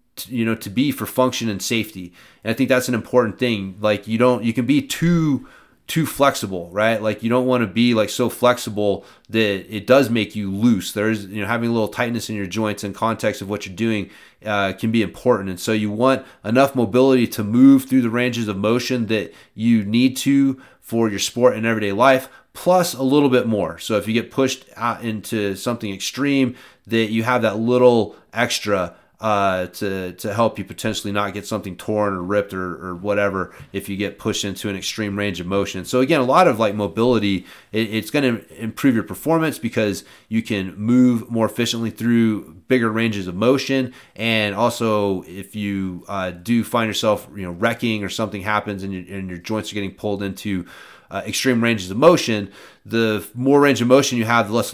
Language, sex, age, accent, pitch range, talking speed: English, male, 30-49, American, 100-120 Hz, 210 wpm